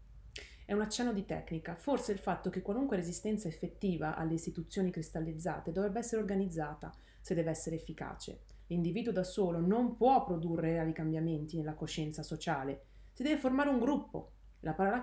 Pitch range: 155-185 Hz